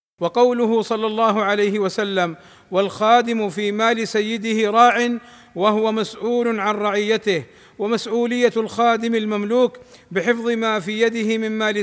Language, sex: Arabic, male